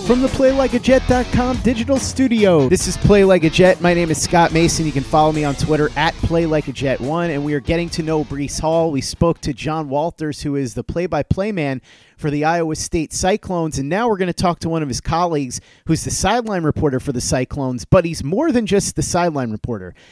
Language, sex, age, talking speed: English, male, 30-49, 220 wpm